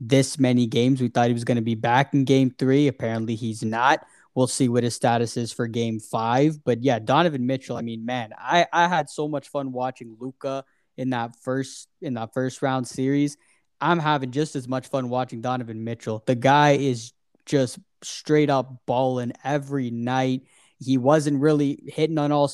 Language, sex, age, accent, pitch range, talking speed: English, male, 10-29, American, 125-145 Hz, 195 wpm